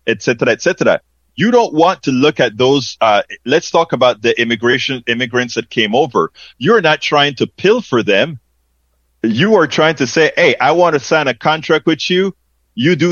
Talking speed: 190 wpm